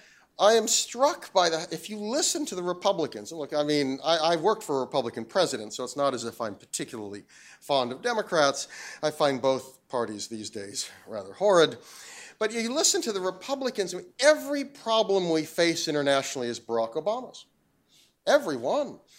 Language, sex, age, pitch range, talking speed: English, male, 40-59, 160-225 Hz, 170 wpm